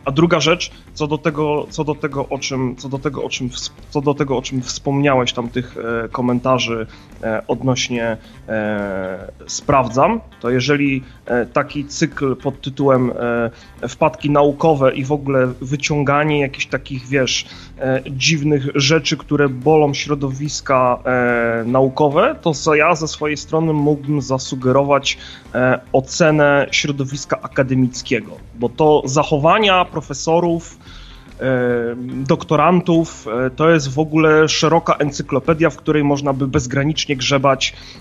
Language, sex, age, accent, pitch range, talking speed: Polish, male, 30-49, native, 130-150 Hz, 100 wpm